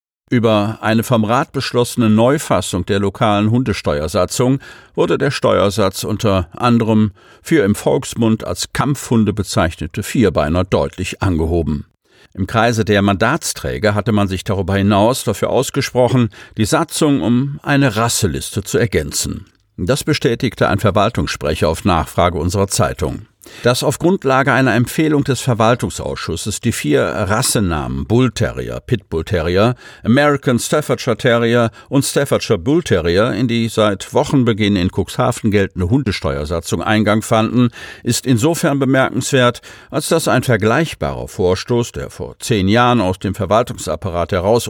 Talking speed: 130 wpm